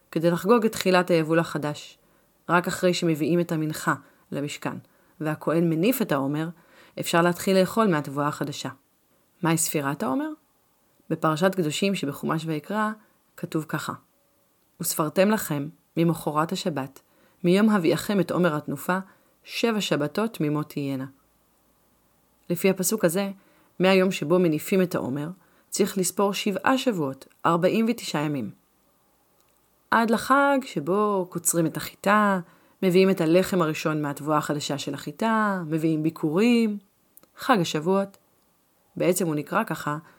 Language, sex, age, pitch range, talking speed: Hebrew, female, 30-49, 155-200 Hz, 120 wpm